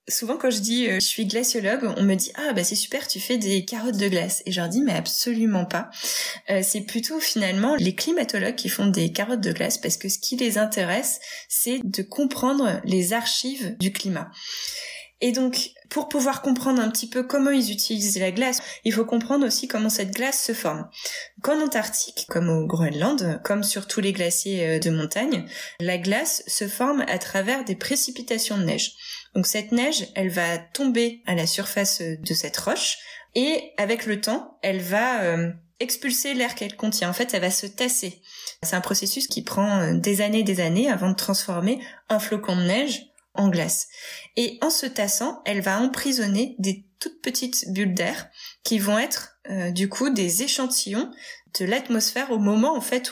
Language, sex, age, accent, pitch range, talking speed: French, female, 20-39, French, 195-255 Hz, 190 wpm